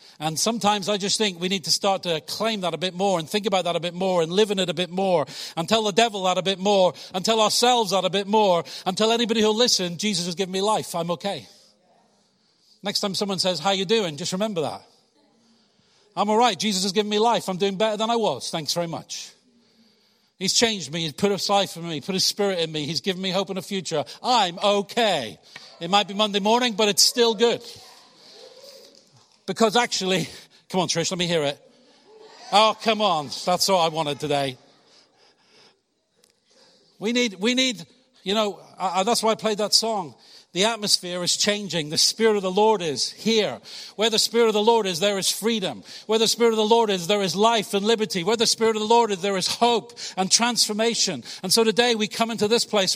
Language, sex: English, male